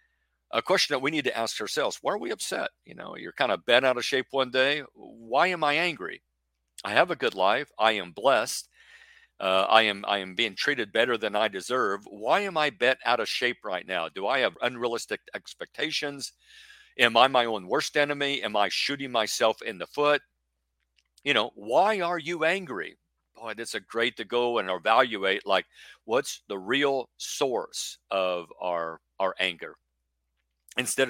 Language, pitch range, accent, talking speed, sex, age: English, 95-145 Hz, American, 185 wpm, male, 50-69